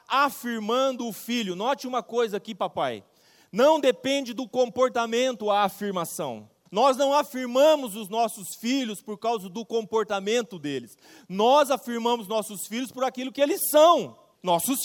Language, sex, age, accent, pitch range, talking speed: Portuguese, male, 40-59, Brazilian, 215-275 Hz, 140 wpm